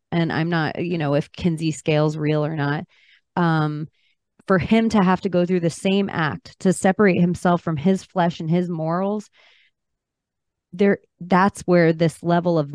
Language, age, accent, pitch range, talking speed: English, 30-49, American, 155-185 Hz, 170 wpm